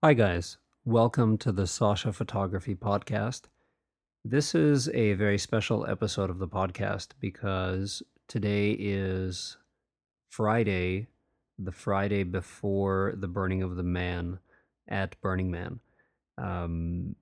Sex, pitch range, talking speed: male, 90-100 Hz, 115 wpm